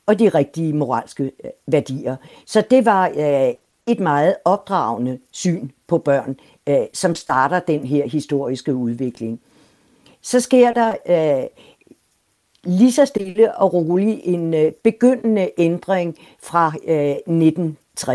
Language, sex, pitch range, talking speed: Danish, female, 140-185 Hz, 120 wpm